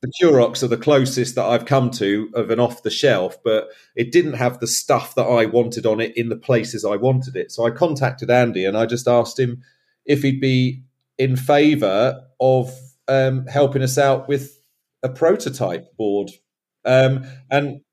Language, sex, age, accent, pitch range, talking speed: English, male, 40-59, British, 120-145 Hz, 180 wpm